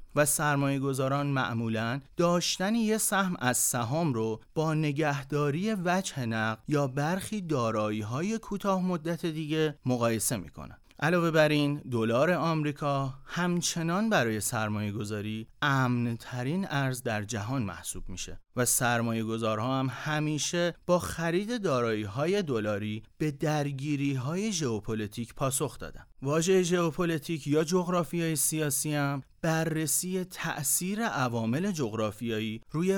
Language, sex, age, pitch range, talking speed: Persian, male, 30-49, 115-165 Hz, 115 wpm